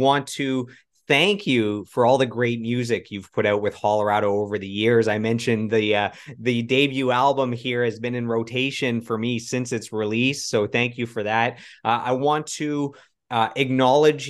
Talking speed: 190 wpm